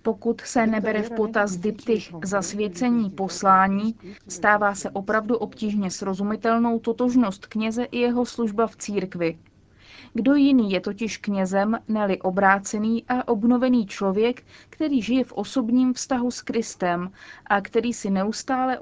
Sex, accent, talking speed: female, native, 130 wpm